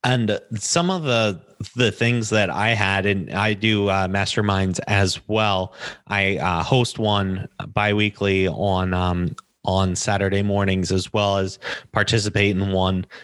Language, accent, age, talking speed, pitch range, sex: English, American, 30-49, 145 wpm, 95-110 Hz, male